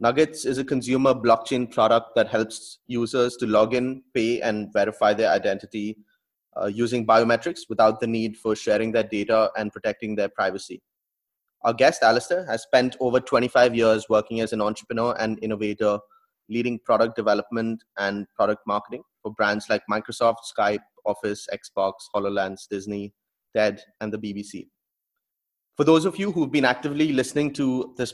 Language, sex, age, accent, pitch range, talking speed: English, male, 20-39, Indian, 110-125 Hz, 160 wpm